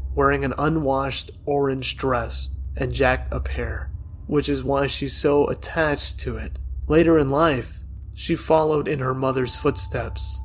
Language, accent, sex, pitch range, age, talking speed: English, American, male, 95-145 Hz, 30-49, 150 wpm